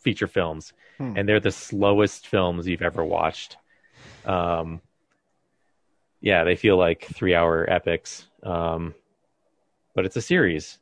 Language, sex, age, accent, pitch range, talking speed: English, male, 30-49, American, 85-100 Hz, 120 wpm